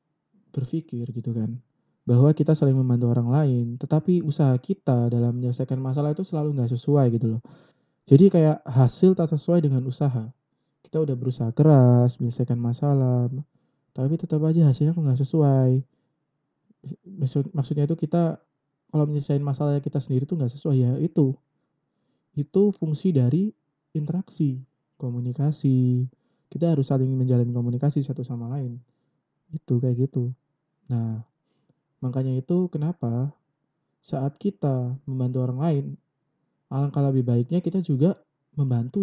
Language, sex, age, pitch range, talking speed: Indonesian, male, 20-39, 130-155 Hz, 130 wpm